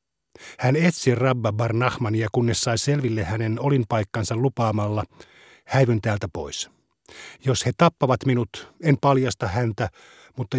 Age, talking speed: 60-79, 125 wpm